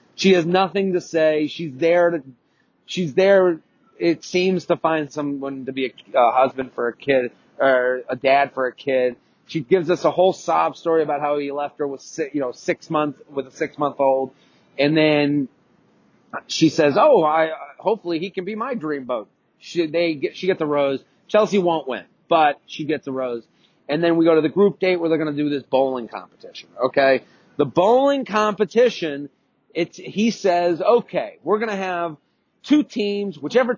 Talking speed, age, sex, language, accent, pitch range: 190 wpm, 30-49, male, English, American, 145-190 Hz